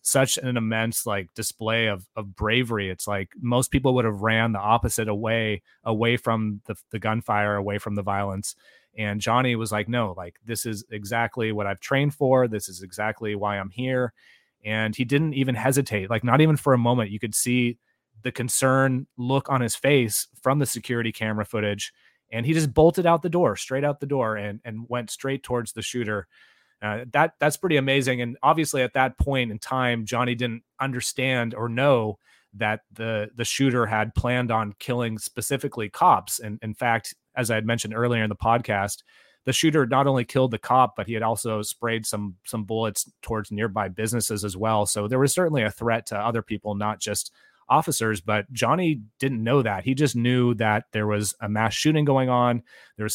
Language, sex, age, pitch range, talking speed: English, male, 30-49, 105-130 Hz, 200 wpm